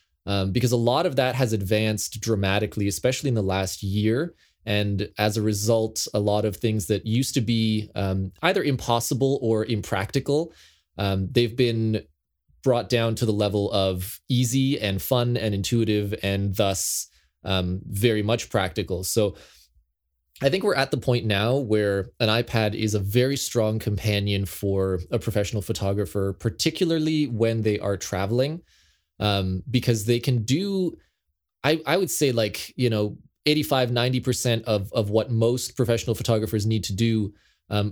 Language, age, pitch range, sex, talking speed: English, 20-39, 100-125 Hz, male, 160 wpm